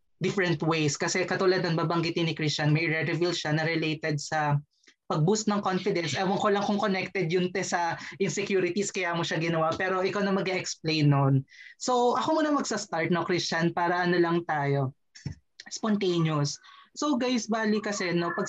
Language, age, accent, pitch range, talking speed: English, 20-39, Filipino, 160-200 Hz, 160 wpm